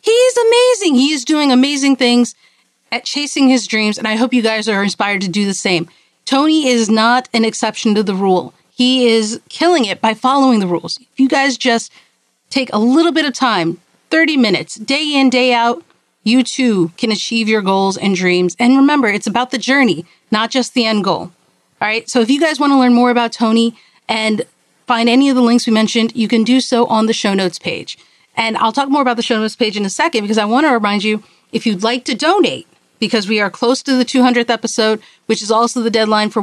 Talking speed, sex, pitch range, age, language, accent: 230 wpm, female, 210-255 Hz, 40-59, English, American